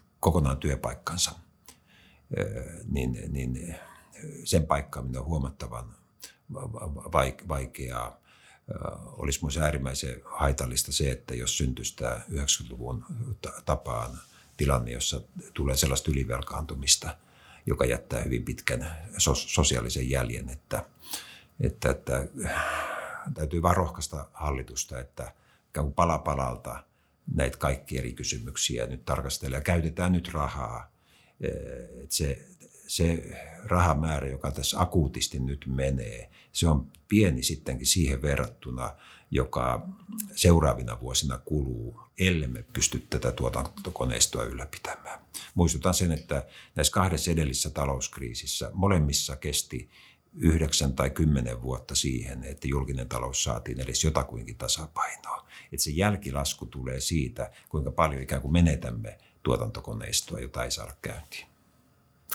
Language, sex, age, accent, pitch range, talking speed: Finnish, male, 60-79, native, 65-80 Hz, 105 wpm